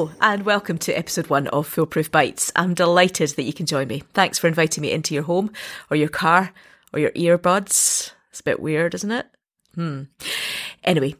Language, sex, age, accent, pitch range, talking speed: English, female, 30-49, British, 155-195 Hz, 195 wpm